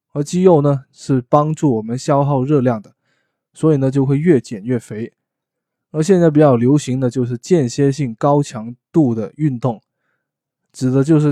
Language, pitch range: Chinese, 125-150 Hz